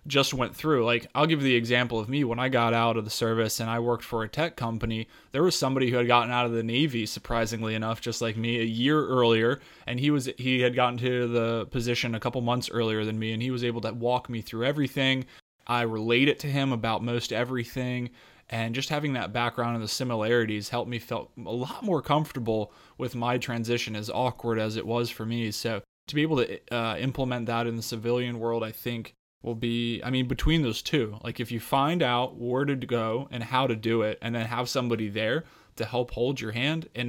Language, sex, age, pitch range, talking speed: English, male, 20-39, 115-130 Hz, 235 wpm